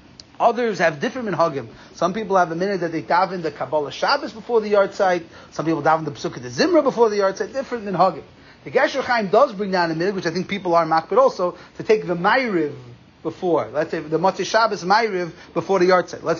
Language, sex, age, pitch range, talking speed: English, male, 30-49, 155-210 Hz, 240 wpm